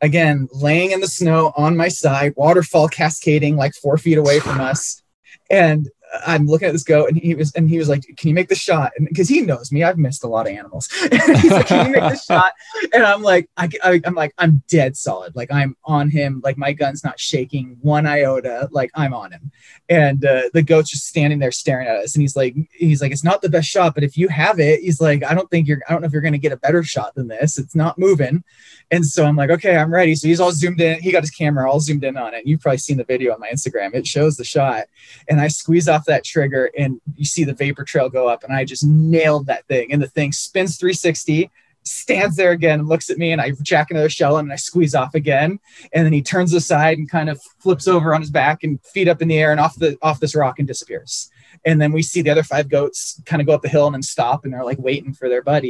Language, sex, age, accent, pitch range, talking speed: English, male, 20-39, American, 140-165 Hz, 270 wpm